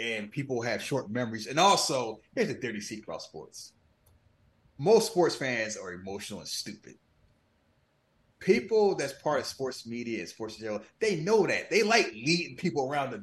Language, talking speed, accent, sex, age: English, 170 wpm, American, male, 30-49